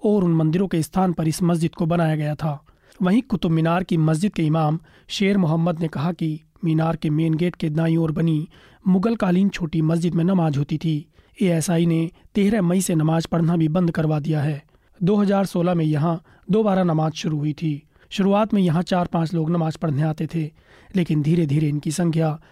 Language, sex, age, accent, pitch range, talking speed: Hindi, male, 30-49, native, 160-185 Hz, 190 wpm